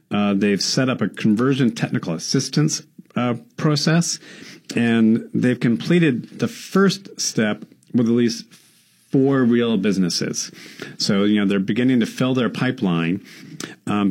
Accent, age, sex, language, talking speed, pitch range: American, 40-59, male, English, 150 wpm, 100-130 Hz